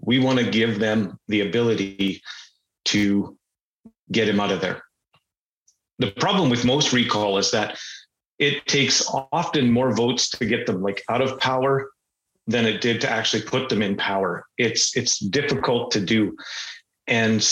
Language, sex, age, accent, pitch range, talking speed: English, male, 40-59, American, 110-135 Hz, 160 wpm